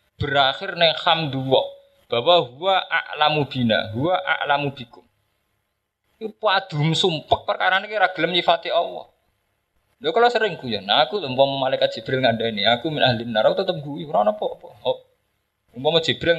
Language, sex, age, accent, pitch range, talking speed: Indonesian, male, 20-39, native, 125-210 Hz, 145 wpm